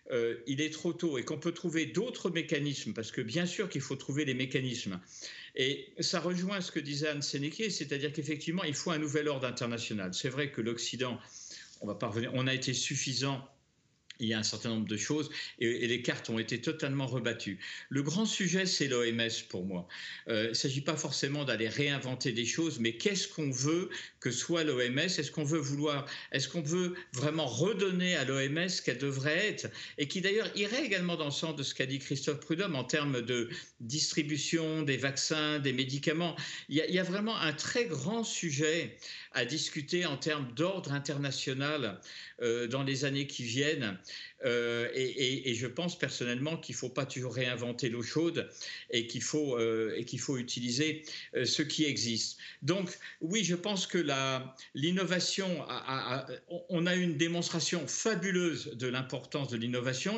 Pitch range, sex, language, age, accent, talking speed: 130-170 Hz, male, French, 50-69, French, 190 wpm